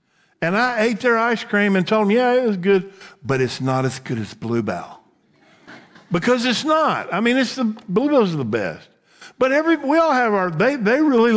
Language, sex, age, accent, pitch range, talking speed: English, male, 50-69, American, 155-230 Hz, 210 wpm